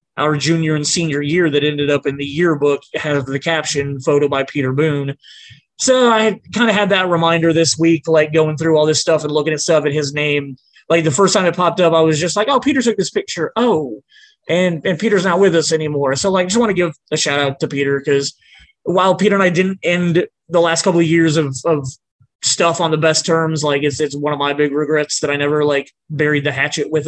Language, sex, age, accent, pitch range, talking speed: English, male, 20-39, American, 140-170 Hz, 245 wpm